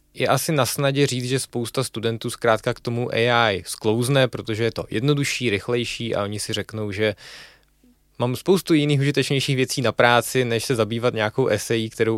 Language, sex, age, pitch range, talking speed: Czech, male, 20-39, 115-145 Hz, 175 wpm